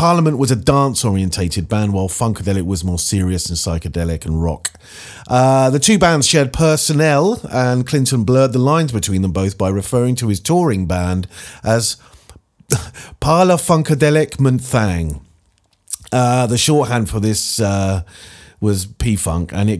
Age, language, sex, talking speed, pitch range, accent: 40-59, English, male, 140 wpm, 95-135 Hz, British